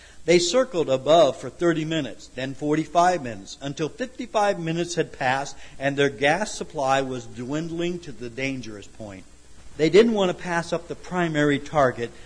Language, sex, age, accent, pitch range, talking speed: English, male, 50-69, American, 120-160 Hz, 160 wpm